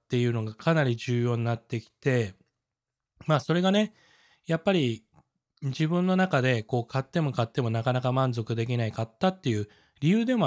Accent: native